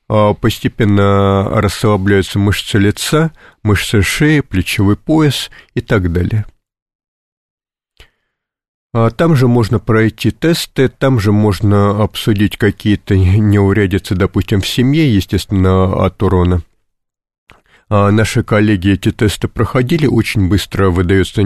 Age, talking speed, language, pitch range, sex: 50-69, 100 wpm, Russian, 100-120 Hz, male